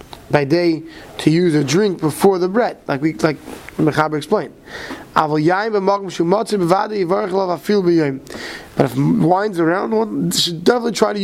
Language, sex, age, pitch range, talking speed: English, male, 20-39, 165-210 Hz, 135 wpm